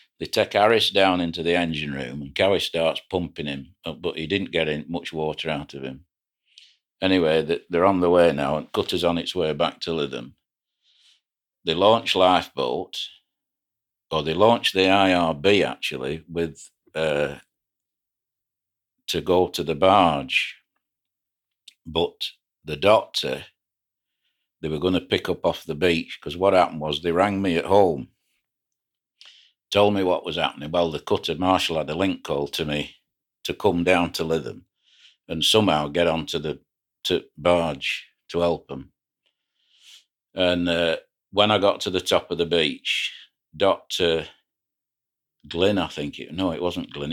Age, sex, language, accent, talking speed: 60-79, male, English, British, 155 wpm